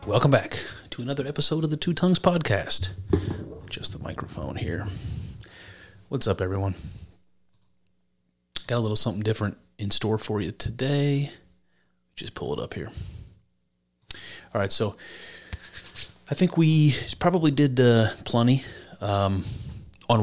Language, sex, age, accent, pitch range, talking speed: English, male, 30-49, American, 95-115 Hz, 130 wpm